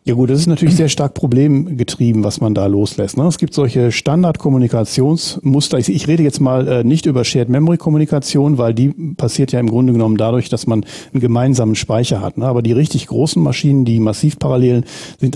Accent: German